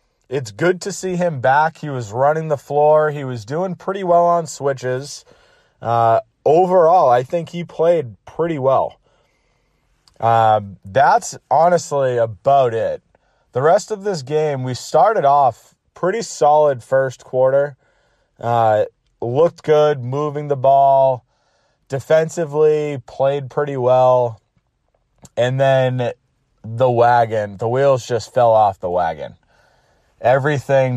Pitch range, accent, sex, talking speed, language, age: 120-150 Hz, American, male, 125 wpm, English, 30-49